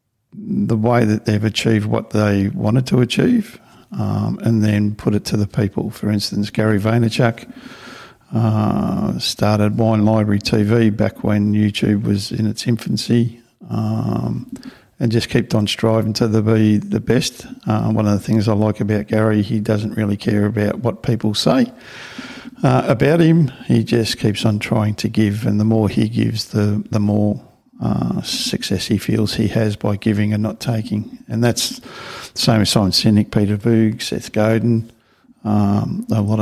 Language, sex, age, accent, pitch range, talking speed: English, male, 50-69, Australian, 105-115 Hz, 170 wpm